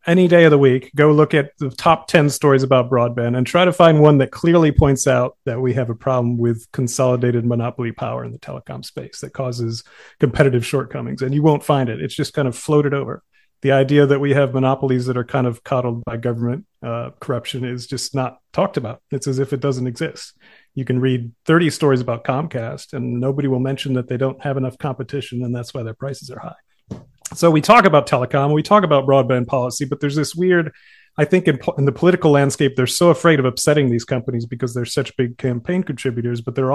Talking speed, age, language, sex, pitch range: 225 wpm, 40-59, English, male, 125-150 Hz